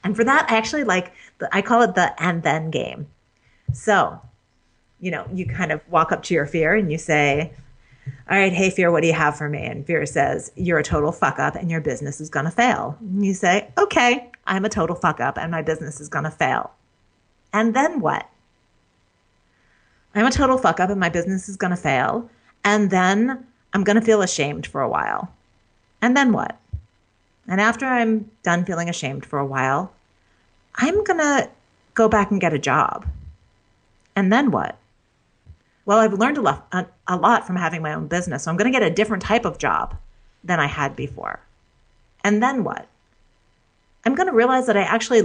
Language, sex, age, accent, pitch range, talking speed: English, female, 40-59, American, 155-220 Hz, 200 wpm